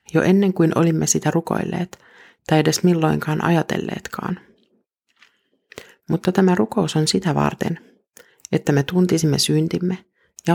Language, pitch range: Finnish, 155-195 Hz